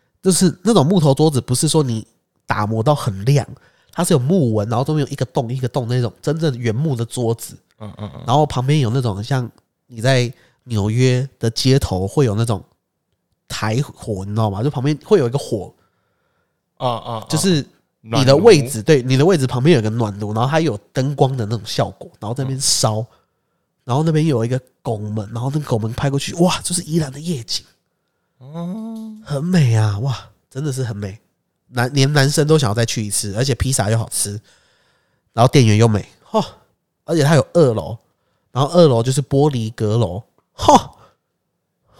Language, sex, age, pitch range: Chinese, male, 30-49, 115-145 Hz